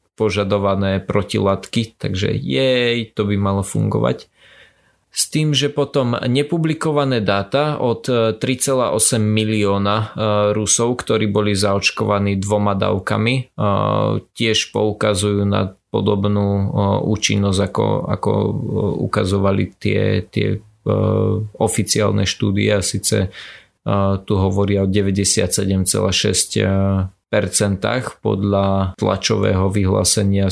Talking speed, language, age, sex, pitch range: 100 wpm, Slovak, 20-39, male, 100-110 Hz